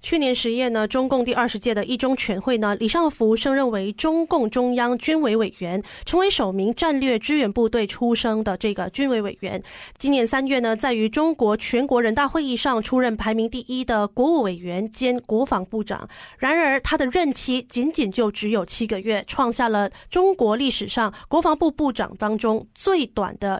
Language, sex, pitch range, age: Chinese, female, 215-270 Hz, 20-39